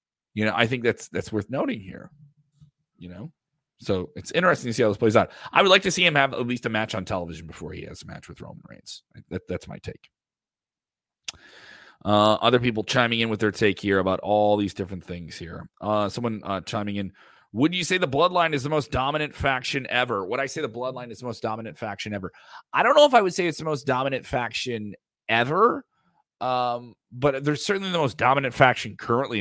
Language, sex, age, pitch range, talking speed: English, male, 30-49, 95-140 Hz, 220 wpm